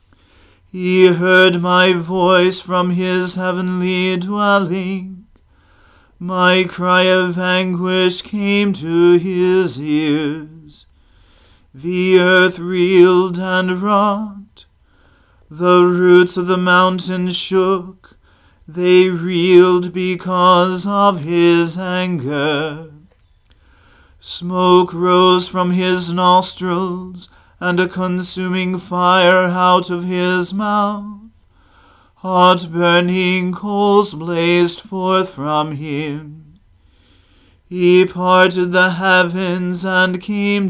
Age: 40-59